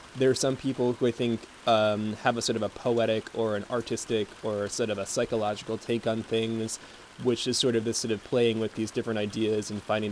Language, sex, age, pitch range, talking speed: English, male, 20-39, 110-125 Hz, 230 wpm